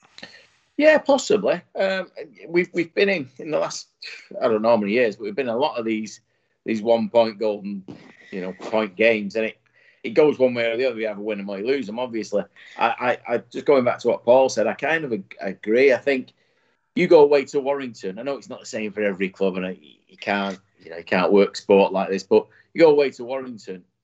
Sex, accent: male, British